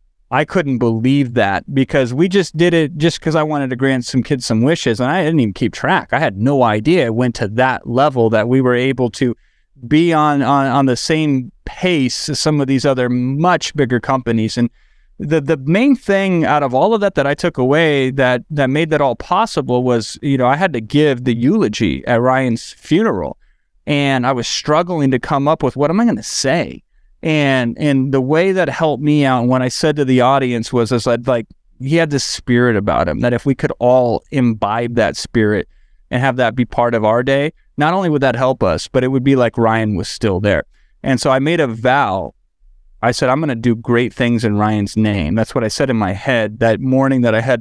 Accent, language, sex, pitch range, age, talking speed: American, English, male, 120-145 Hz, 30-49, 235 wpm